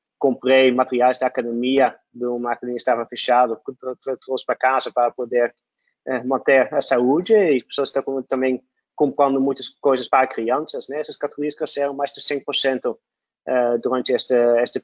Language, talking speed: Portuguese, 150 wpm